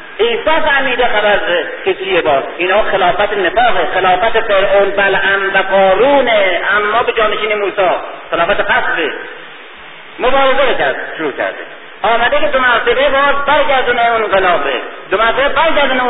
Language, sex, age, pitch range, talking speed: Persian, male, 40-59, 230-315 Hz, 135 wpm